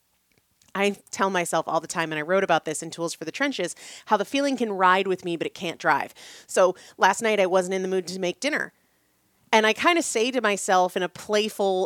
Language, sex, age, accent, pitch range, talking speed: English, female, 30-49, American, 175-235 Hz, 245 wpm